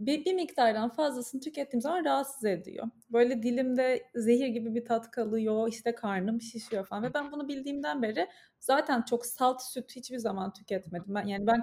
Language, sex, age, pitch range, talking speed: Turkish, female, 30-49, 210-260 Hz, 175 wpm